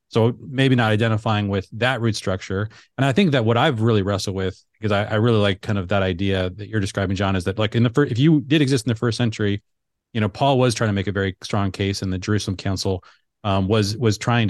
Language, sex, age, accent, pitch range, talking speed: English, male, 30-49, American, 100-120 Hz, 260 wpm